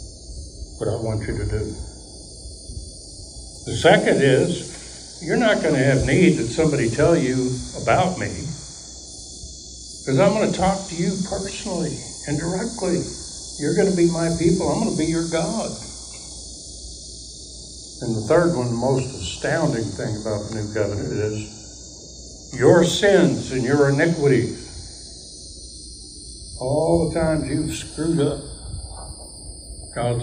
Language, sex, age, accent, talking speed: English, male, 60-79, American, 135 wpm